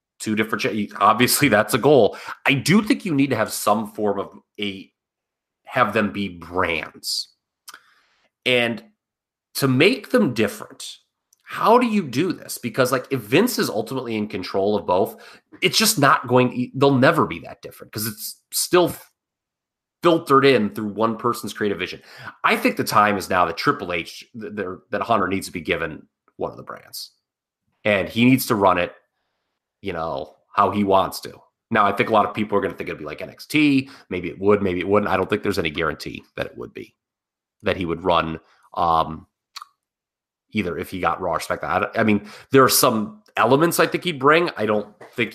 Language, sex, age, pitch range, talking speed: English, male, 30-49, 100-135 Hz, 195 wpm